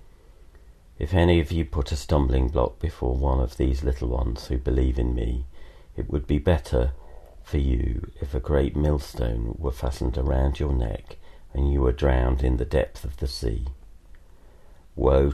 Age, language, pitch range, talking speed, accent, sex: 50-69, English, 65-80 Hz, 170 wpm, British, male